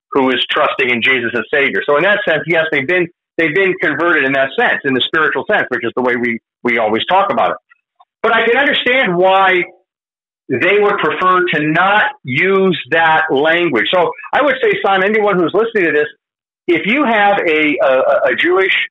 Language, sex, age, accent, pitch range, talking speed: English, male, 50-69, American, 150-195 Hz, 205 wpm